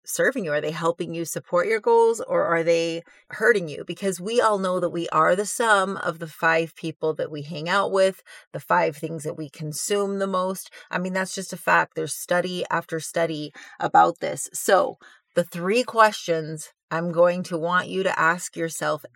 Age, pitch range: 30-49, 165-200 Hz